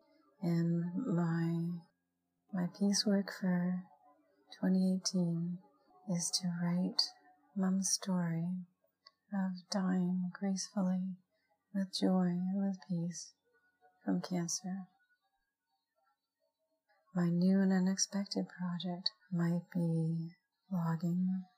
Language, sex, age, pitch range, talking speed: English, female, 30-49, 175-200 Hz, 85 wpm